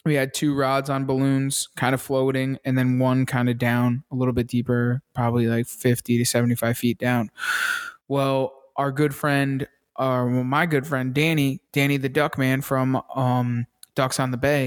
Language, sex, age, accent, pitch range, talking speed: English, male, 20-39, American, 130-155 Hz, 190 wpm